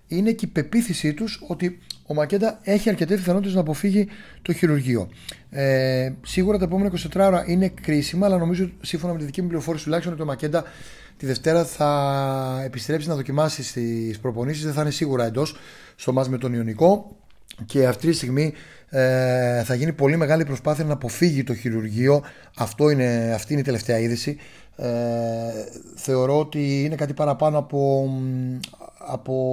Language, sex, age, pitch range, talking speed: Greek, male, 30-49, 125-160 Hz, 165 wpm